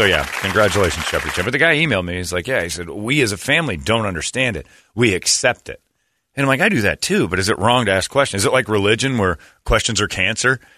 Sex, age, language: male, 40-59, English